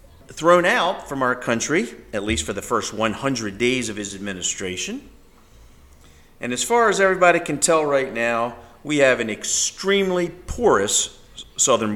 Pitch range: 115-175 Hz